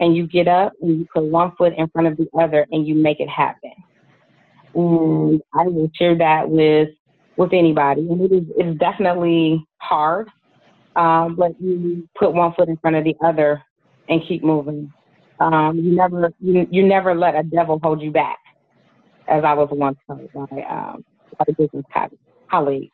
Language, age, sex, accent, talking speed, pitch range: English, 30-49, female, American, 185 wpm, 155-175 Hz